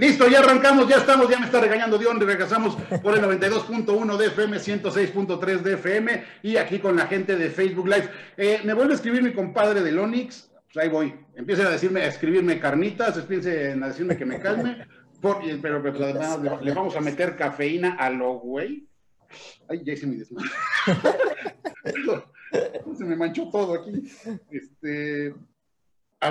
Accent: Mexican